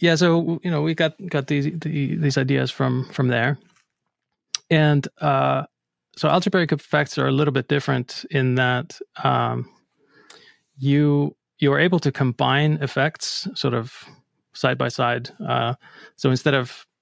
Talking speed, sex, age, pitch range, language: 150 wpm, male, 20-39, 125-145 Hz, English